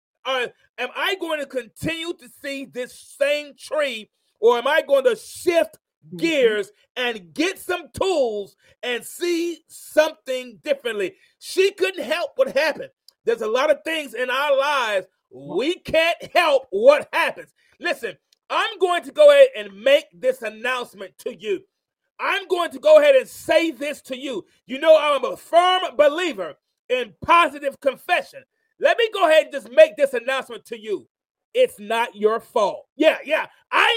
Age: 40-59